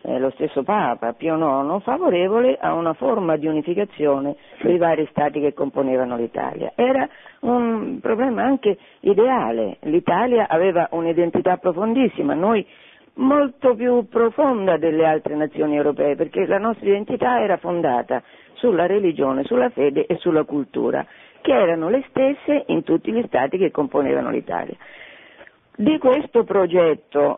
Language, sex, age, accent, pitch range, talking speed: Italian, female, 50-69, native, 155-235 Hz, 135 wpm